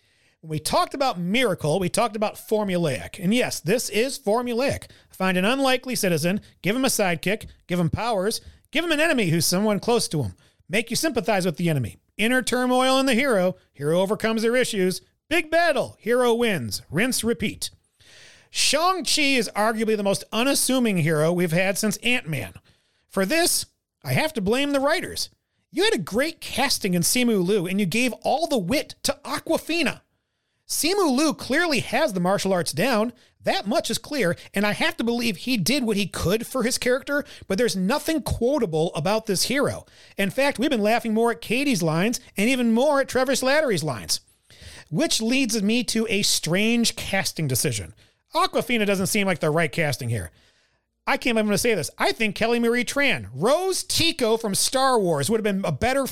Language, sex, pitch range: English, male, 185-255 Hz